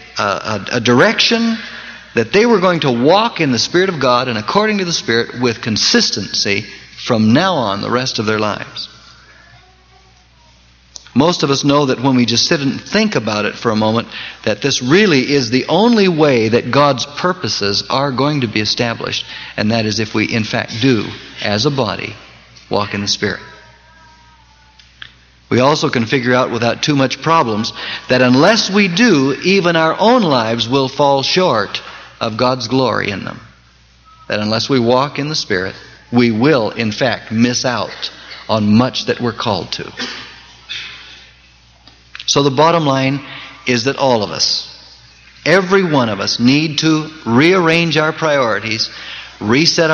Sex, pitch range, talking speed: male, 110-155 Hz, 165 wpm